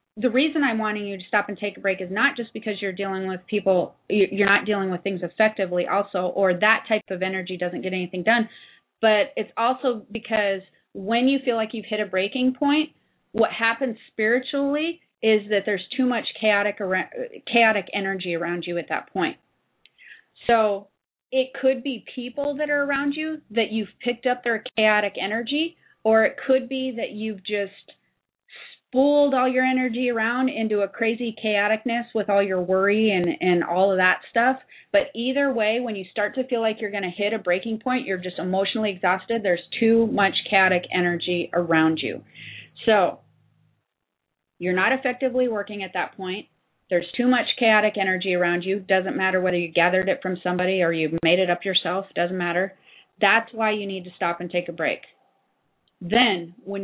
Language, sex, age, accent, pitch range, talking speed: English, female, 30-49, American, 190-245 Hz, 185 wpm